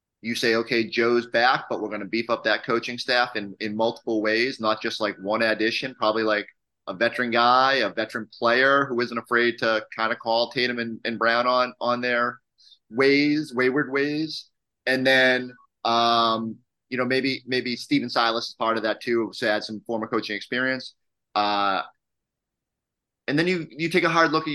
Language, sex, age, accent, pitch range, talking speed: English, male, 30-49, American, 115-140 Hz, 195 wpm